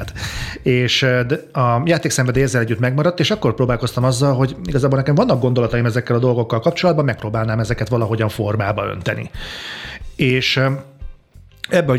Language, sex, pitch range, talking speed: Hungarian, male, 110-130 Hz, 130 wpm